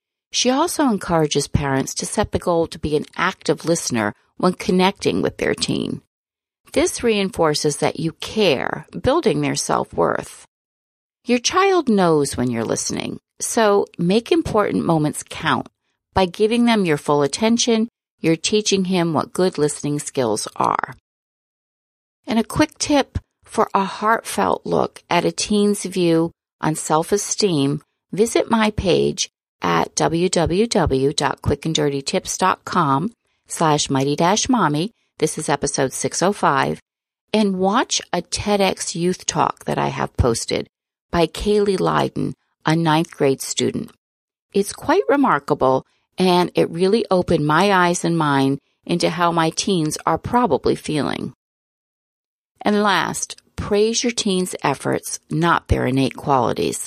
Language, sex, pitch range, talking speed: English, female, 150-210 Hz, 130 wpm